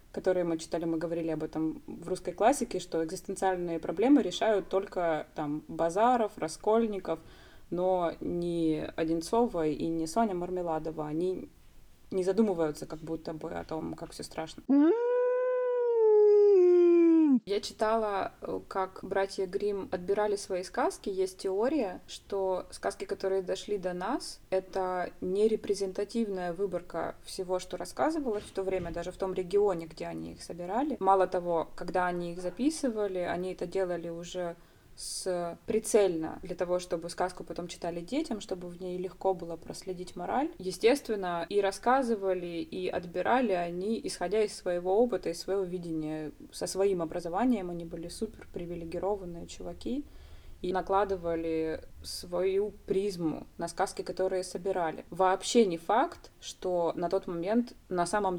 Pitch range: 170-205 Hz